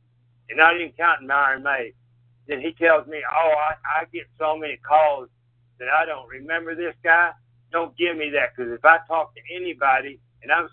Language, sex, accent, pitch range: English, male, American, 130-165 Hz